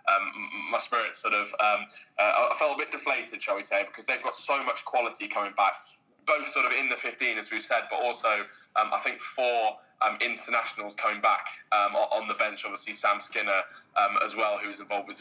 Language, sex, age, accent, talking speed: English, male, 20-39, British, 215 wpm